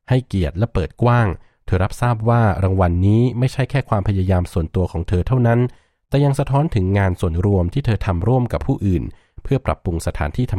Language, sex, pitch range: Thai, male, 90-120 Hz